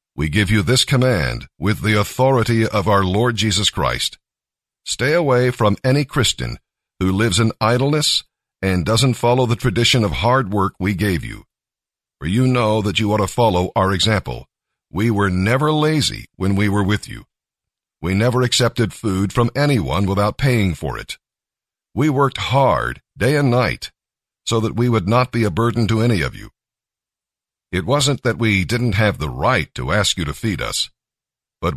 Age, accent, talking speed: 50-69, American, 180 wpm